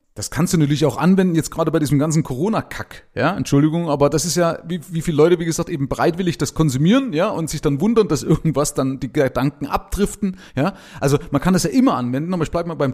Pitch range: 125-175 Hz